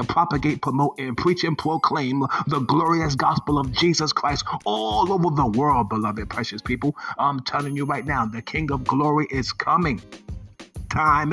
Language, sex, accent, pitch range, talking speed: English, male, American, 125-160 Hz, 165 wpm